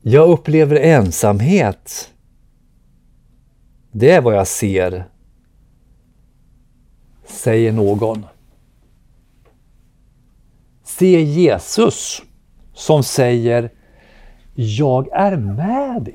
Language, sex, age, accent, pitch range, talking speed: Swedish, male, 60-79, native, 100-155 Hz, 65 wpm